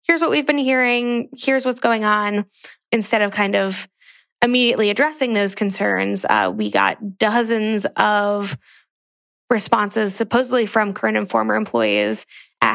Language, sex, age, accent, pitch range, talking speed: English, female, 20-39, American, 195-240 Hz, 140 wpm